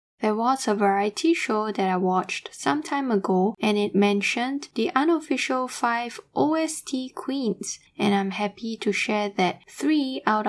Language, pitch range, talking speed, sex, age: English, 200-260 Hz, 155 wpm, female, 10-29